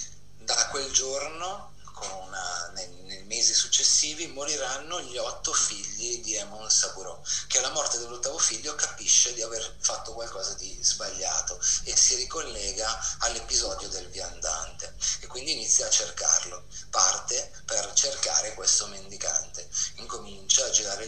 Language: Italian